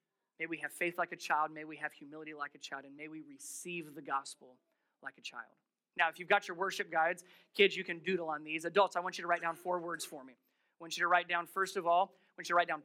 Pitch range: 165-215 Hz